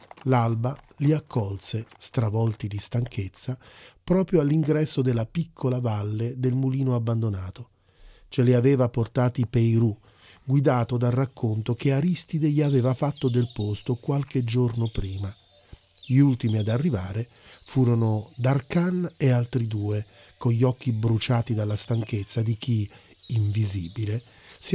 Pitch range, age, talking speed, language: 105-130 Hz, 40-59, 125 wpm, Italian